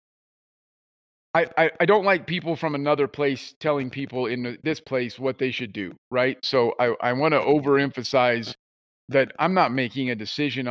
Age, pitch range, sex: 40-59, 125-155 Hz, male